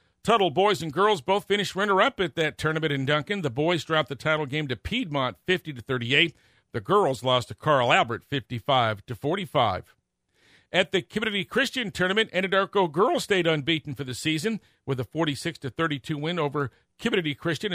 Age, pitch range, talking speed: 50-69, 130-175 Hz, 200 wpm